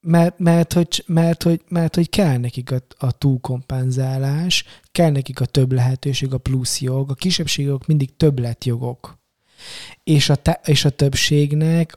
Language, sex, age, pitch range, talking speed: Hungarian, male, 20-39, 130-150 Hz, 150 wpm